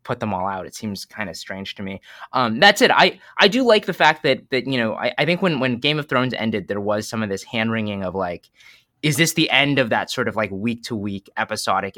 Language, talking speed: English, 275 wpm